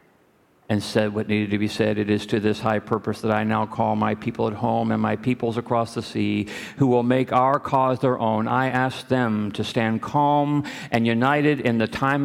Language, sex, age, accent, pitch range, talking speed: English, male, 50-69, American, 115-155 Hz, 220 wpm